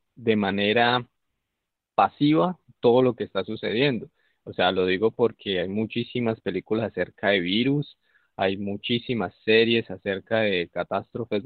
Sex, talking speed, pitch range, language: male, 130 wpm, 95-120 Hz, Spanish